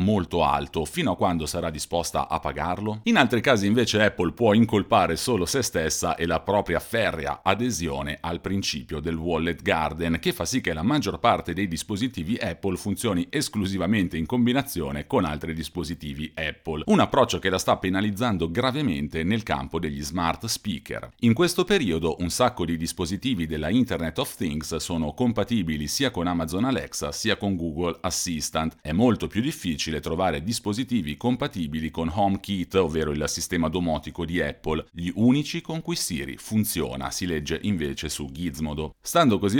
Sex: male